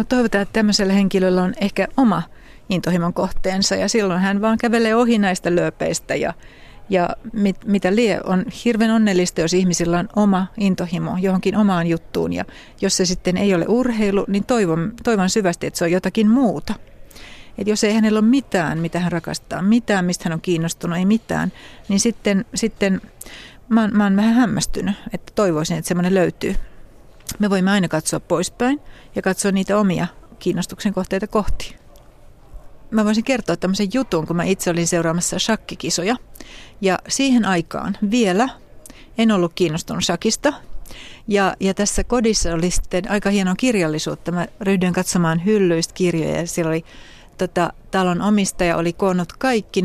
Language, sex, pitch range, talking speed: Finnish, female, 175-215 Hz, 160 wpm